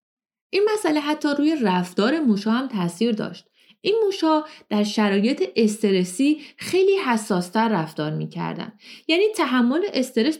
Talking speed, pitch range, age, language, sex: 120 wpm, 200-305 Hz, 30-49, Persian, female